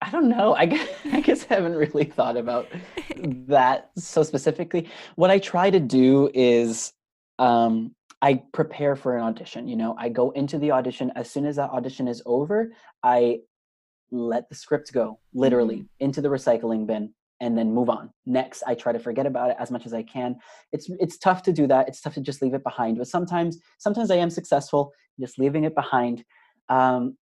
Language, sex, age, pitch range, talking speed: English, male, 20-39, 120-155 Hz, 200 wpm